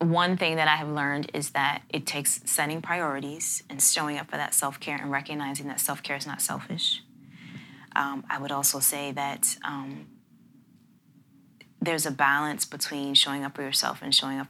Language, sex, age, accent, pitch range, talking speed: English, female, 20-39, American, 135-150 Hz, 180 wpm